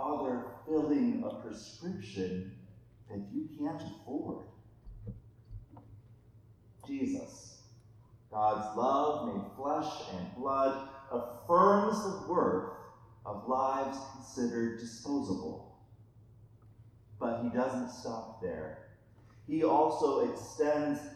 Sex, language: male, English